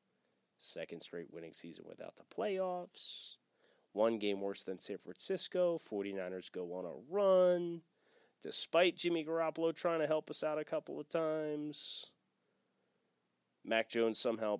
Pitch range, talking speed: 110-180 Hz, 135 wpm